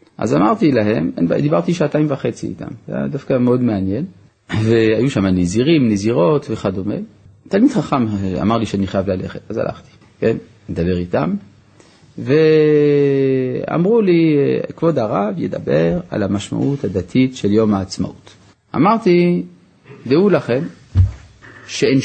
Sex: male